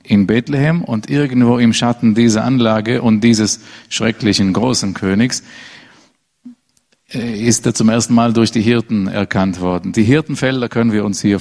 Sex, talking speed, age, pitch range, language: male, 155 wpm, 50-69, 105-125 Hz, German